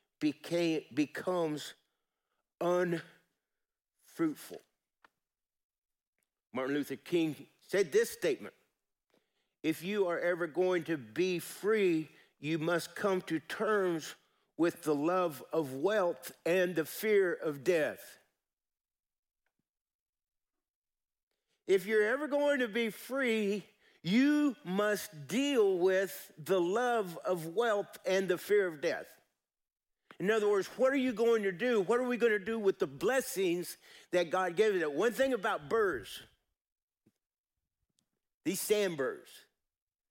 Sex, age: male, 50-69